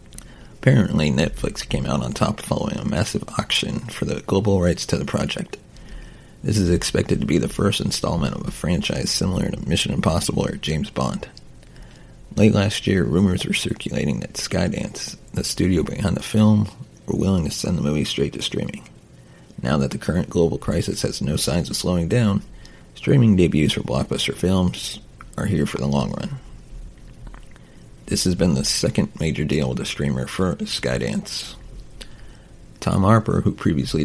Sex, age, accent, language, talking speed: male, 30-49, American, English, 170 wpm